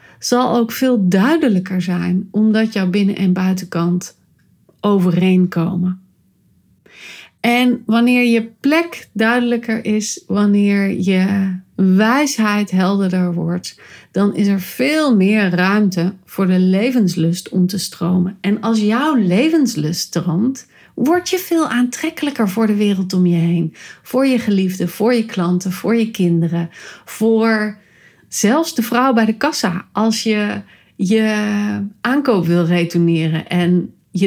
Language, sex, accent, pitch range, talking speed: Dutch, female, Dutch, 180-225 Hz, 130 wpm